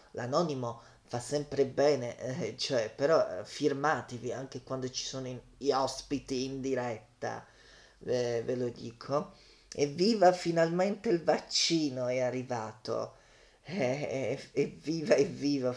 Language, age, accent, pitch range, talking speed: Italian, 30-49, native, 125-145 Hz, 135 wpm